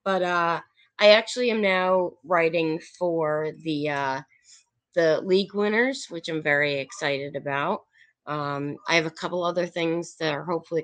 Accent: American